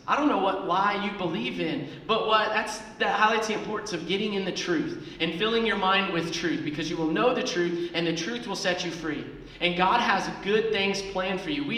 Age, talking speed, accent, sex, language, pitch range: 30-49, 245 wpm, American, male, English, 165-215 Hz